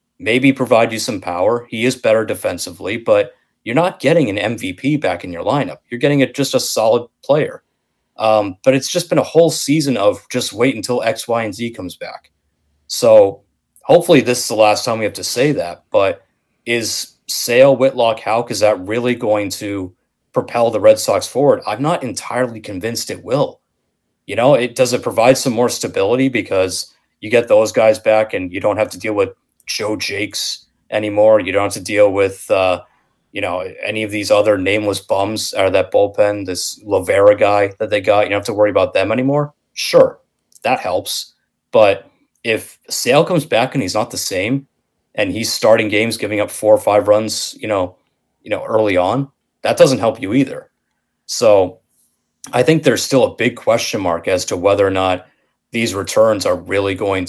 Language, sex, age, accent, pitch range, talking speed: English, male, 30-49, American, 100-135 Hz, 195 wpm